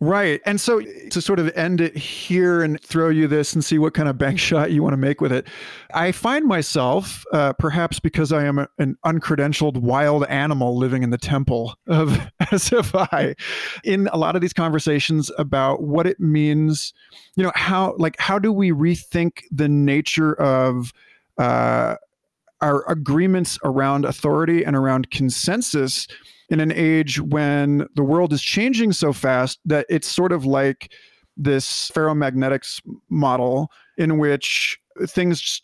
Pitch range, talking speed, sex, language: 140-170 Hz, 160 wpm, male, English